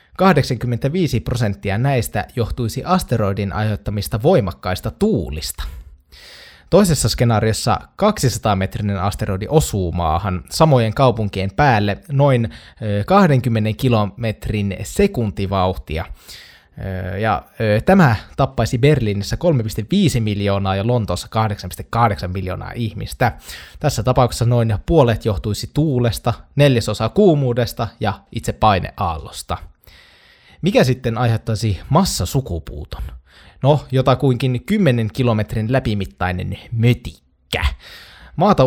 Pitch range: 100-130 Hz